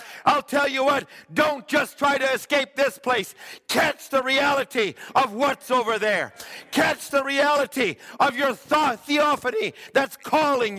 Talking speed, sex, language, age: 145 wpm, male, English, 50-69